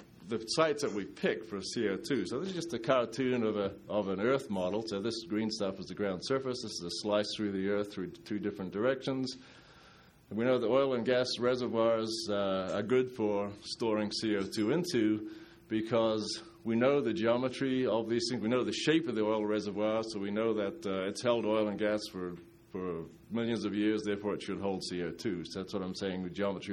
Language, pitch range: English, 100-125 Hz